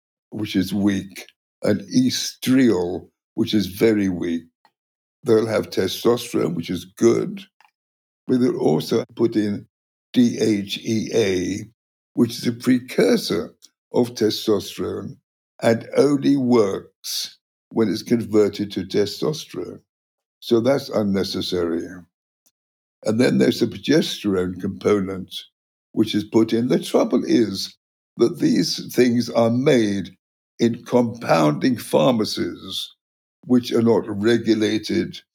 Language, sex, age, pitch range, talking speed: English, male, 60-79, 95-115 Hz, 105 wpm